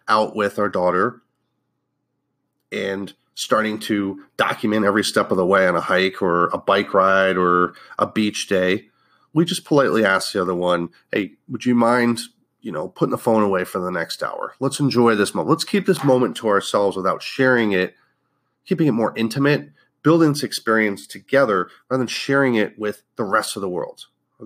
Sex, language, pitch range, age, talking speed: male, English, 105-160 Hz, 30-49, 190 wpm